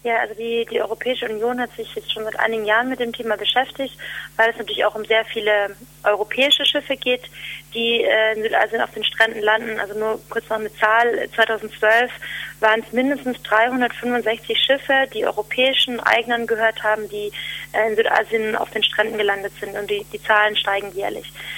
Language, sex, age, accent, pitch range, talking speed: German, female, 30-49, German, 220-245 Hz, 185 wpm